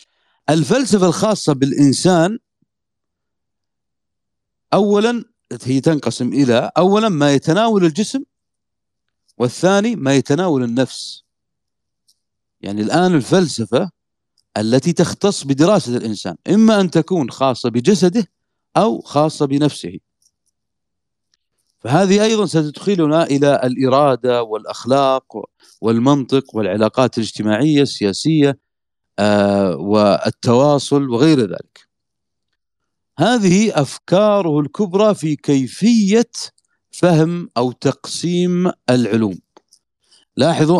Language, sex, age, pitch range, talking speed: Arabic, male, 40-59, 125-185 Hz, 80 wpm